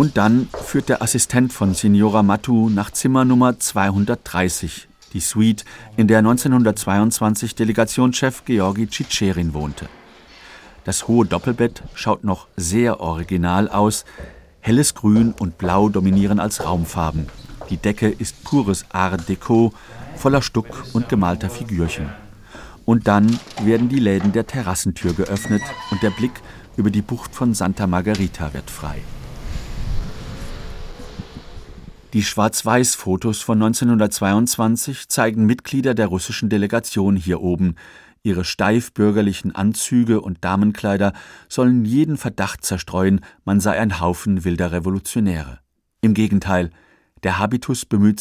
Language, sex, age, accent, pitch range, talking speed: German, male, 50-69, German, 95-115 Hz, 120 wpm